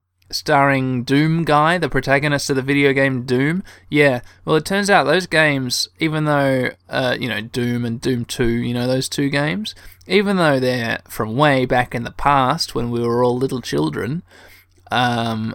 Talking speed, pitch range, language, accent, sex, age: 180 wpm, 120-160 Hz, English, Australian, male, 20-39